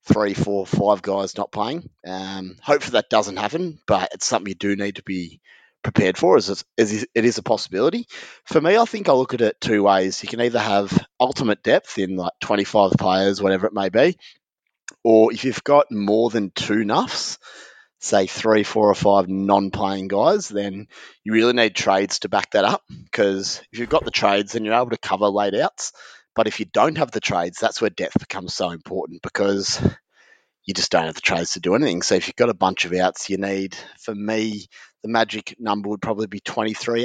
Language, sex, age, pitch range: English, male, 30-49, 95-115 Hz